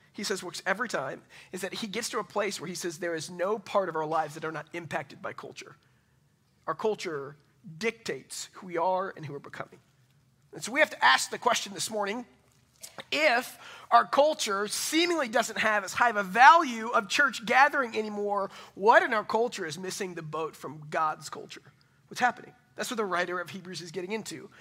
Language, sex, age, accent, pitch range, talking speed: English, male, 40-59, American, 170-240 Hz, 205 wpm